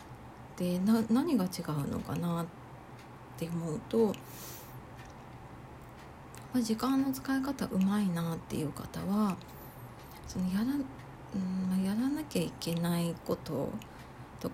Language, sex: Japanese, female